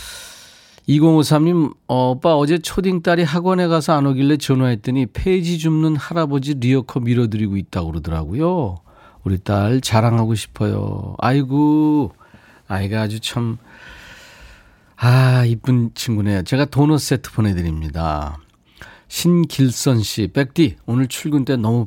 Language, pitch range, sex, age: Korean, 105-145 Hz, male, 40-59